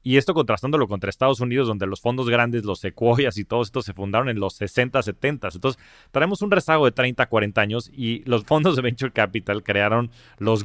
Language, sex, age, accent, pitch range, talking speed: Spanish, male, 30-49, Mexican, 100-125 Hz, 210 wpm